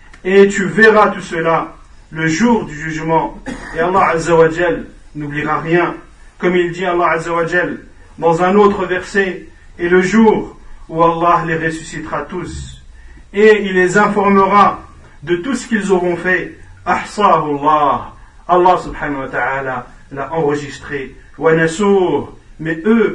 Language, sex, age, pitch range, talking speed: French, male, 50-69, 145-195 Hz, 130 wpm